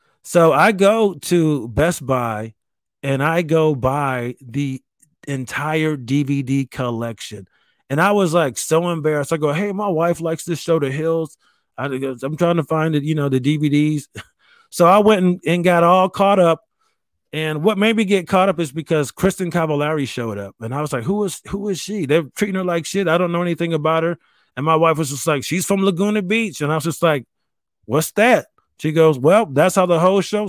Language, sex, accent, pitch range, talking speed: English, male, American, 130-195 Hz, 205 wpm